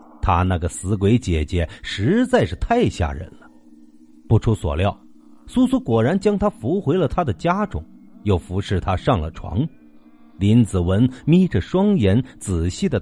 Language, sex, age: Chinese, male, 50-69